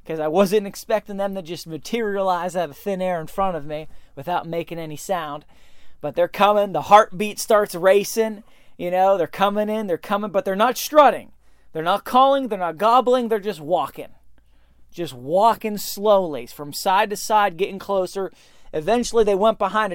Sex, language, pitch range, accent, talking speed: male, English, 175-235 Hz, American, 180 wpm